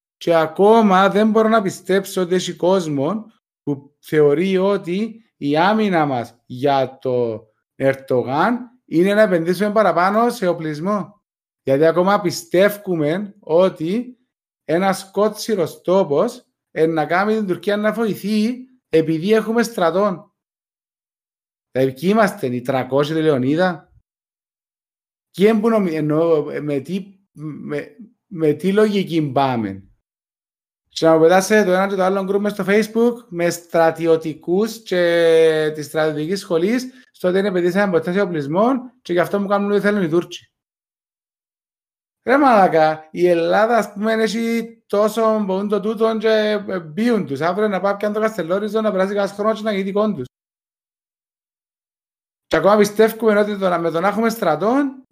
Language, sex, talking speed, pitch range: Greek, male, 100 wpm, 160-215 Hz